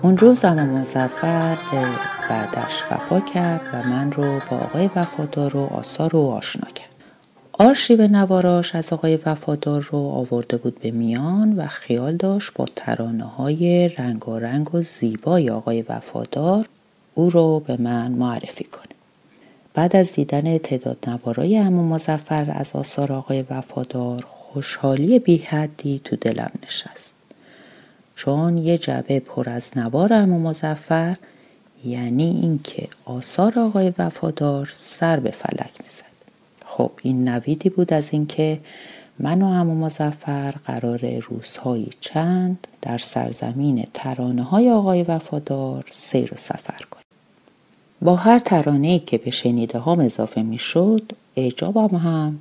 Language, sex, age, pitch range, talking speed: Persian, female, 40-59, 130-175 Hz, 125 wpm